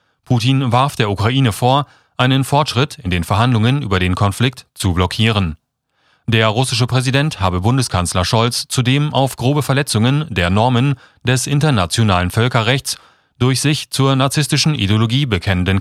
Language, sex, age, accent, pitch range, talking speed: German, male, 30-49, German, 100-135 Hz, 135 wpm